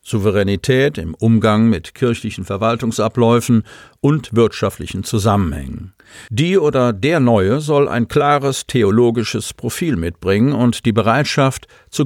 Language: German